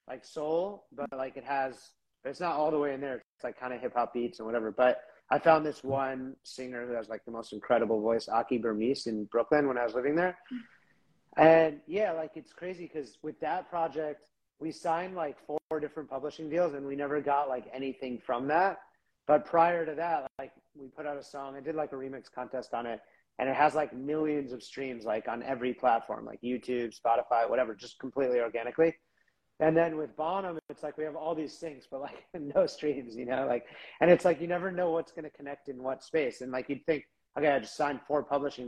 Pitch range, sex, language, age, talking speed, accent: 125-155 Hz, male, English, 30-49, 225 wpm, American